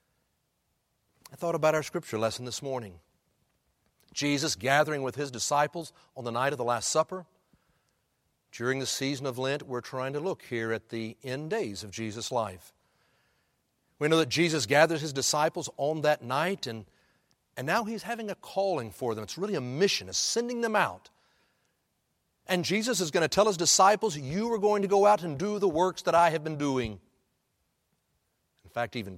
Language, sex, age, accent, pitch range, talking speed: English, male, 60-79, American, 125-200 Hz, 185 wpm